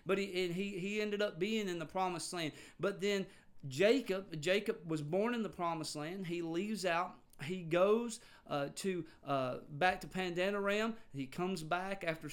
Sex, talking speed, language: male, 180 wpm, English